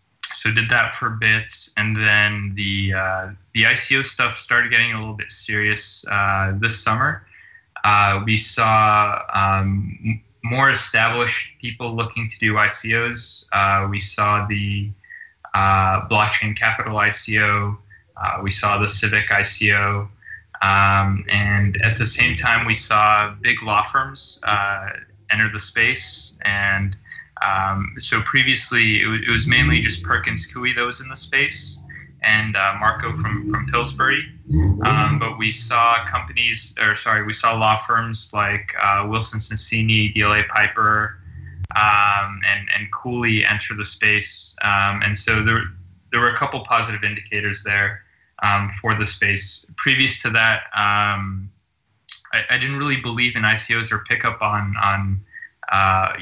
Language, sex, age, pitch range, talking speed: English, male, 20-39, 100-110 Hz, 150 wpm